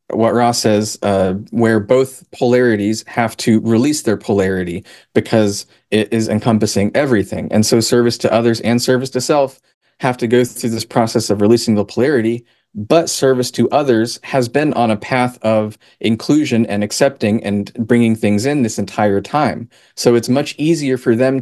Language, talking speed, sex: English, 175 wpm, male